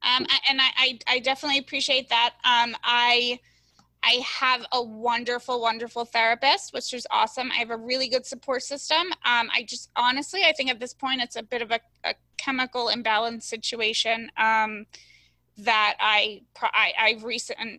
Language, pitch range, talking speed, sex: English, 215-255 Hz, 170 wpm, female